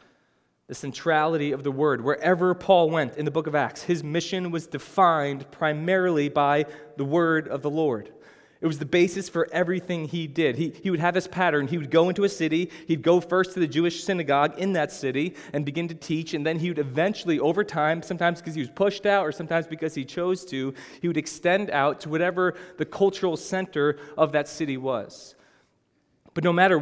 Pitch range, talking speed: 150-185 Hz, 210 wpm